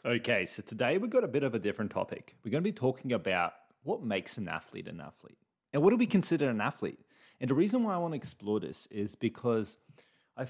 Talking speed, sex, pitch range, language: 240 wpm, male, 105-150 Hz, English